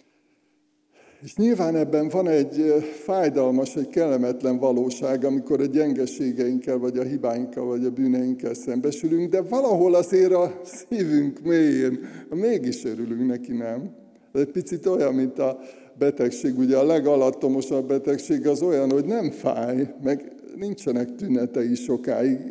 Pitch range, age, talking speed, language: 130-175 Hz, 60-79, 130 wpm, Hungarian